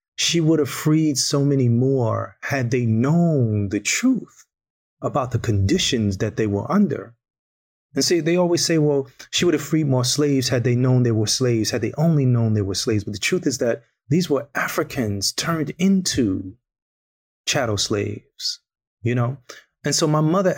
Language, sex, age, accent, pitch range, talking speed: English, male, 30-49, American, 115-155 Hz, 180 wpm